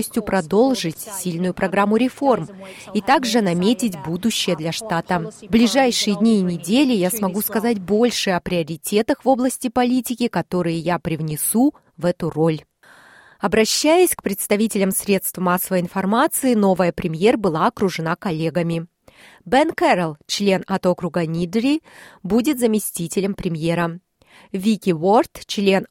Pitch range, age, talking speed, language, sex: 180-245 Hz, 30-49, 125 wpm, Russian, female